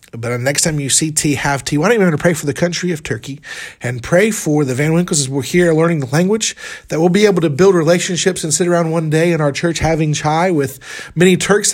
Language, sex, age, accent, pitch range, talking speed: English, male, 40-59, American, 150-185 Hz, 270 wpm